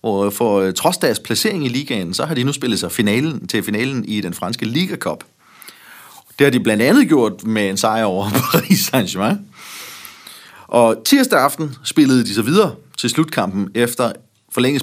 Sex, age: male, 30-49